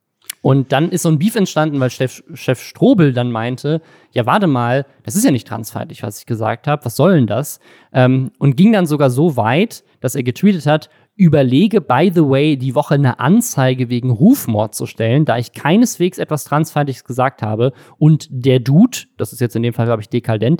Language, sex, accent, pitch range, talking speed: German, male, German, 125-160 Hz, 205 wpm